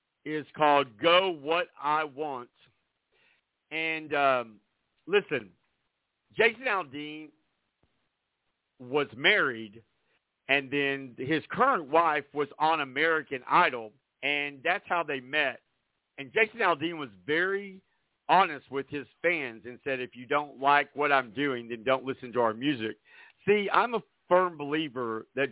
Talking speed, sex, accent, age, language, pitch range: 135 wpm, male, American, 50-69, English, 130-165 Hz